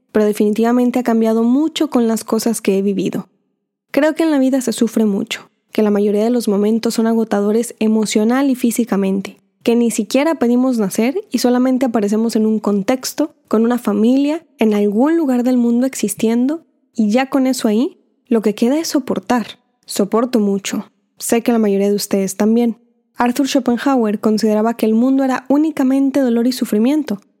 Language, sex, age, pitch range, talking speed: Spanish, female, 10-29, 215-255 Hz, 175 wpm